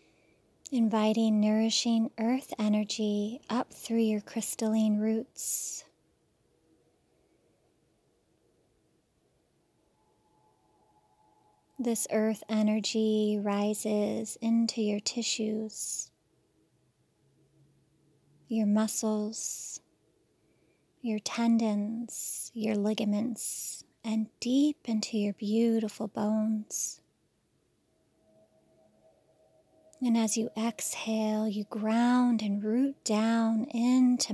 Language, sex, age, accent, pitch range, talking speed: English, female, 30-49, American, 210-235 Hz, 65 wpm